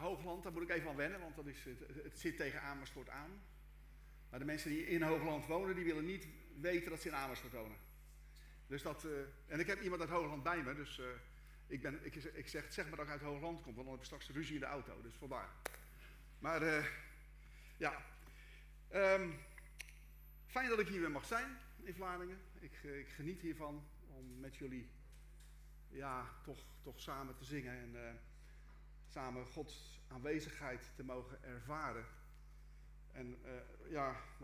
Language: Dutch